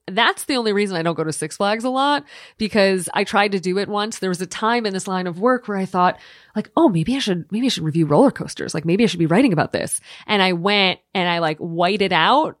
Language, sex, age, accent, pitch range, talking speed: English, female, 30-49, American, 175-230 Hz, 280 wpm